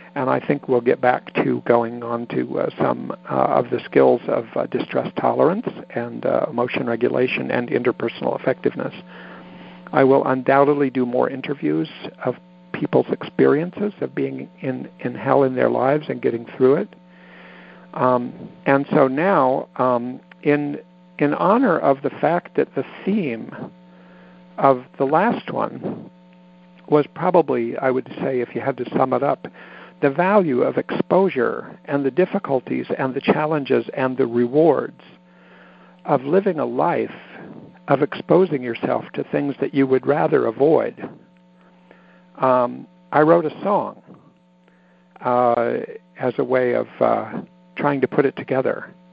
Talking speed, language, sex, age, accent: 150 wpm, English, male, 60-79, American